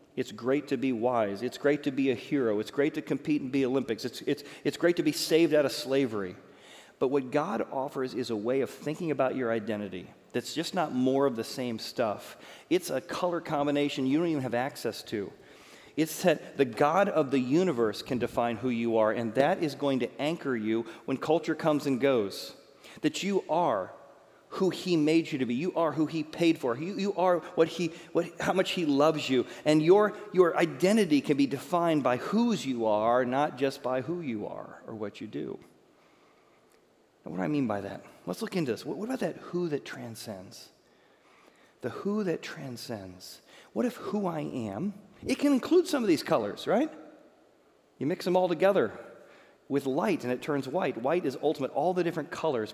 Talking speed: 205 wpm